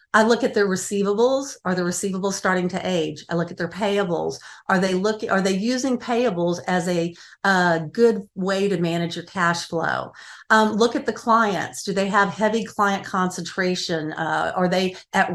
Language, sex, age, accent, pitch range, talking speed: English, female, 50-69, American, 175-210 Hz, 190 wpm